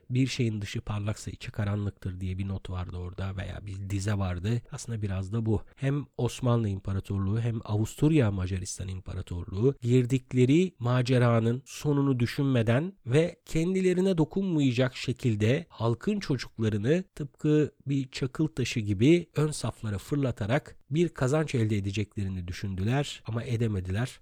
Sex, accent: male, native